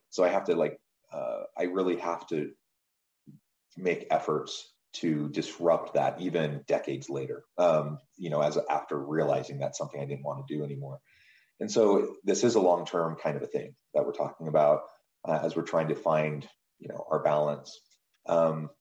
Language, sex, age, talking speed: English, male, 30-49, 180 wpm